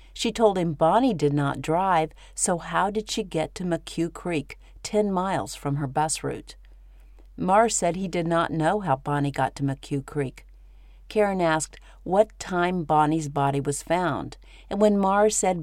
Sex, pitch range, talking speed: female, 145-185 Hz, 175 wpm